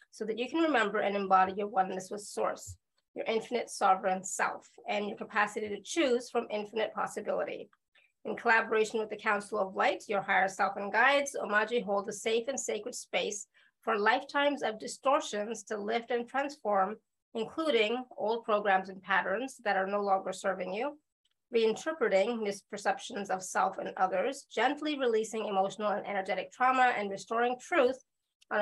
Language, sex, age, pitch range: English, female, 30-49, 205-250 Hz